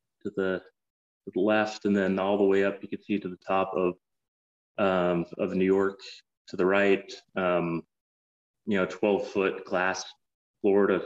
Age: 30-49